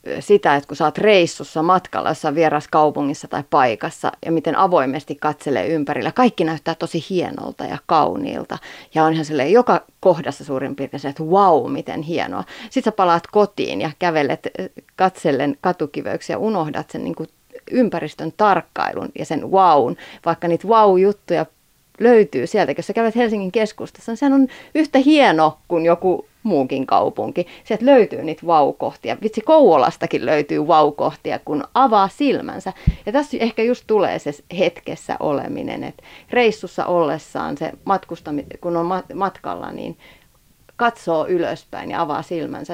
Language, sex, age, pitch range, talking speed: Finnish, female, 30-49, 160-220 Hz, 145 wpm